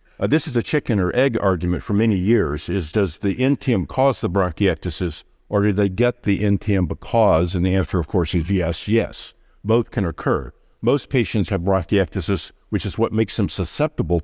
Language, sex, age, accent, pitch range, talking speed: English, male, 50-69, American, 90-110 Hz, 195 wpm